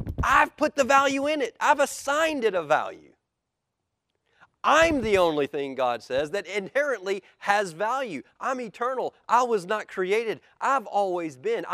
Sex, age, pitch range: male, 40-59, 130-220 Hz